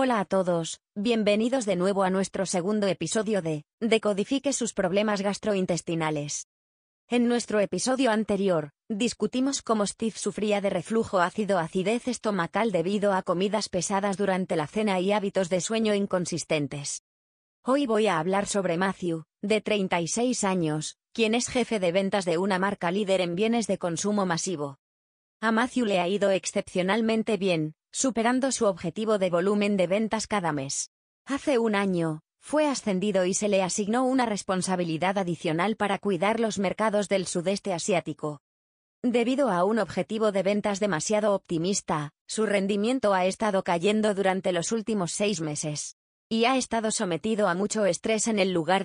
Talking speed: 155 wpm